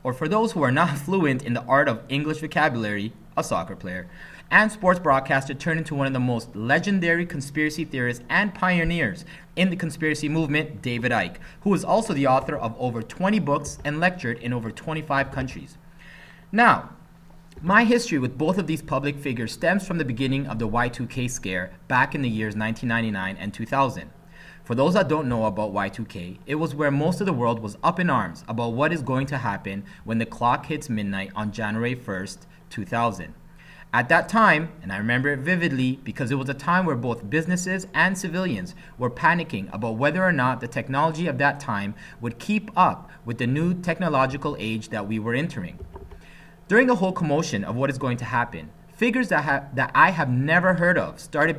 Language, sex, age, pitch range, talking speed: English, male, 30-49, 115-170 Hz, 195 wpm